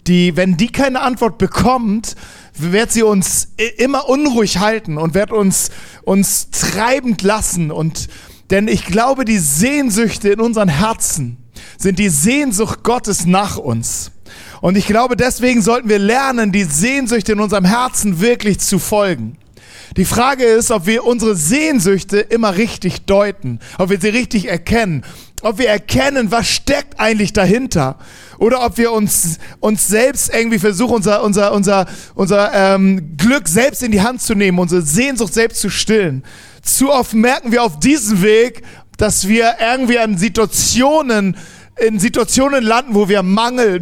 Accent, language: German, German